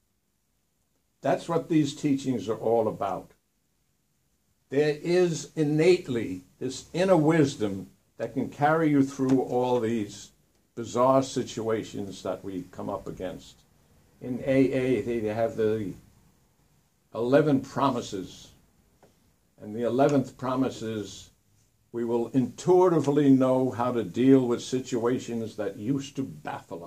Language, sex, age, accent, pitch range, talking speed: English, male, 60-79, American, 115-140 Hz, 115 wpm